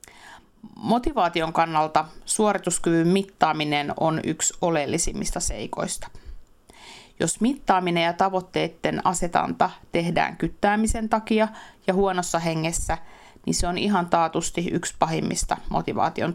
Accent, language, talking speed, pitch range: native, Finnish, 100 wpm, 160-195 Hz